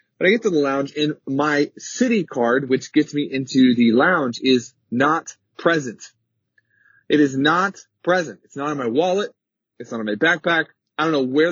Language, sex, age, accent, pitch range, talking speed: English, male, 20-39, American, 125-180 Hz, 195 wpm